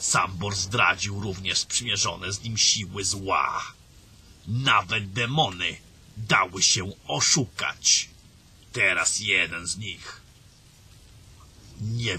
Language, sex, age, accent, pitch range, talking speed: Polish, male, 50-69, native, 95-115 Hz, 90 wpm